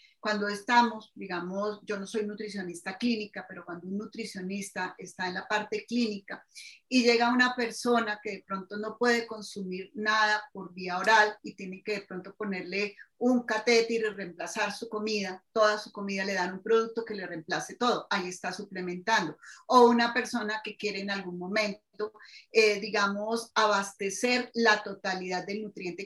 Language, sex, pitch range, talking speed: Spanish, female, 195-235 Hz, 165 wpm